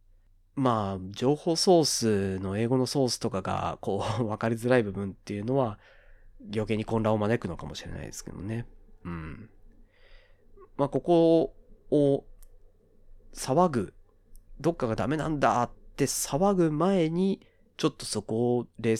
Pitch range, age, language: 90-130 Hz, 30-49, Japanese